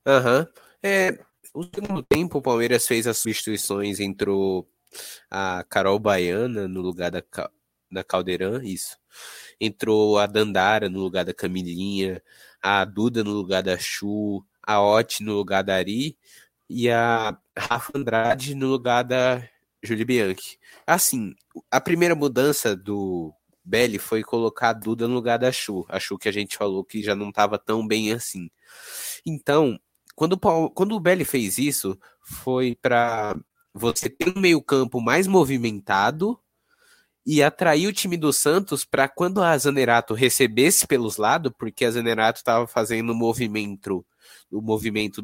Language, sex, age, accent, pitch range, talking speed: Portuguese, male, 20-39, Brazilian, 105-140 Hz, 155 wpm